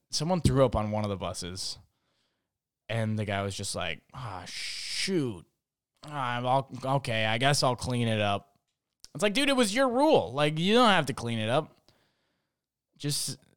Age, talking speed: 20-39, 180 wpm